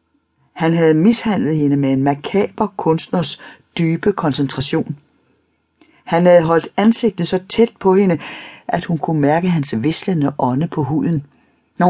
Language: Danish